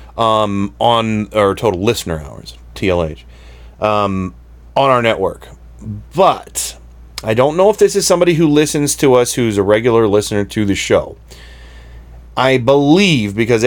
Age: 30-49